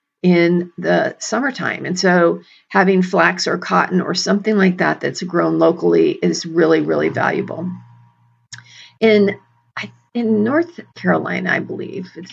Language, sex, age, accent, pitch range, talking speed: English, female, 40-59, American, 150-200 Hz, 130 wpm